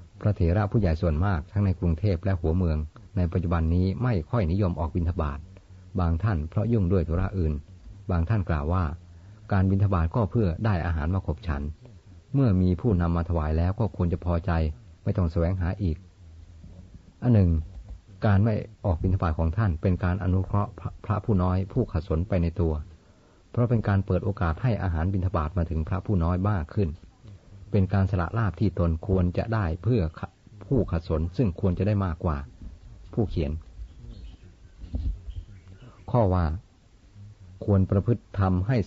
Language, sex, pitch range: Thai, male, 85-100 Hz